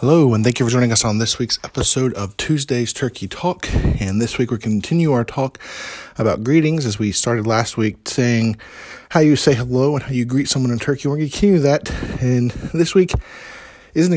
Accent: American